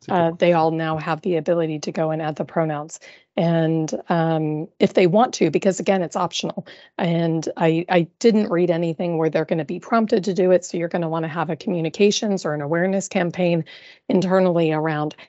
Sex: female